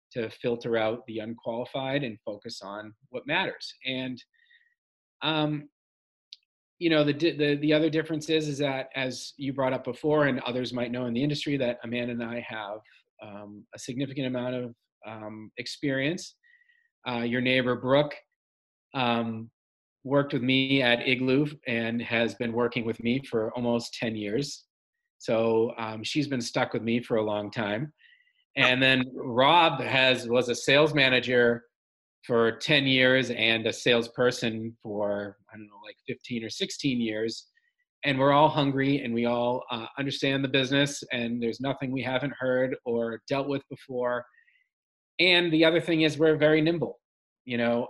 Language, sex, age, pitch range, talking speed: English, male, 40-59, 115-140 Hz, 165 wpm